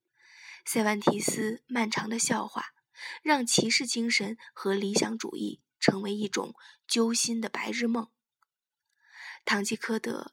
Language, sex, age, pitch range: Chinese, female, 20-39, 225-295 Hz